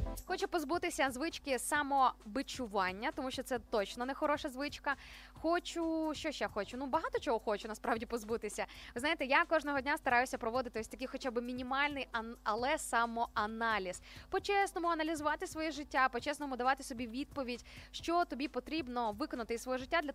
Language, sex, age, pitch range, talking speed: Ukrainian, female, 20-39, 240-315 Hz, 160 wpm